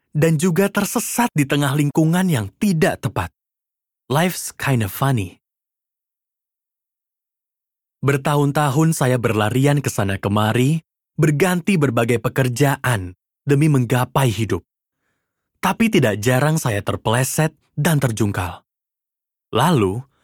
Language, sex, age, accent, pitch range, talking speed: Indonesian, male, 20-39, native, 110-155 Hz, 100 wpm